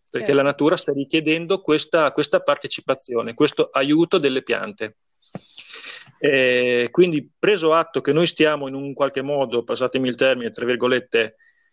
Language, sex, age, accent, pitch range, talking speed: English, male, 30-49, Italian, 130-160 Hz, 140 wpm